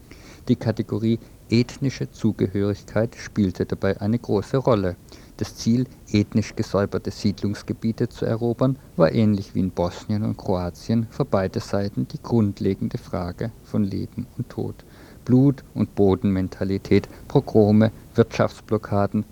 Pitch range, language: 95-115 Hz, German